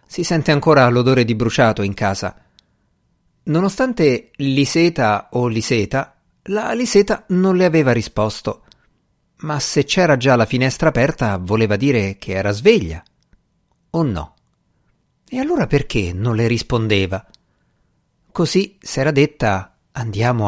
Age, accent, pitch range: 50-69, native, 115-165 Hz